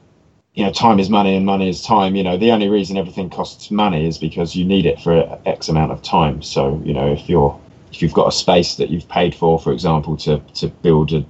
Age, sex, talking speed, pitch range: 20-39, male, 245 wpm, 85-120 Hz